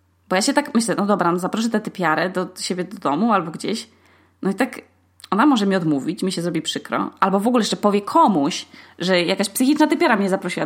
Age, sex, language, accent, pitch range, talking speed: 20-39, female, Polish, native, 170-240 Hz, 220 wpm